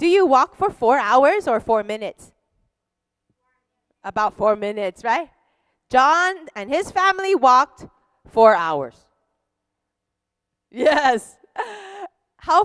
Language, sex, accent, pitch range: Korean, female, American, 210-335 Hz